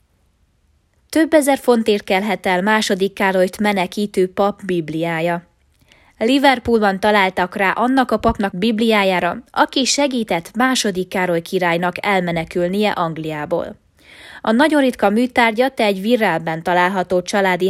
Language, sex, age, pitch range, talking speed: Hungarian, female, 20-39, 180-235 Hz, 110 wpm